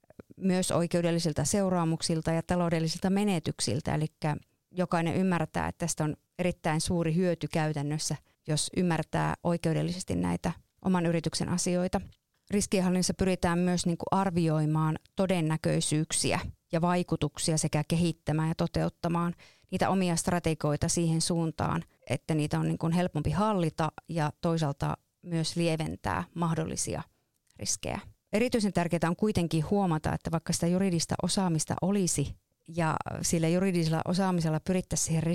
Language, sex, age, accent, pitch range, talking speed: Finnish, female, 30-49, native, 160-180 Hz, 115 wpm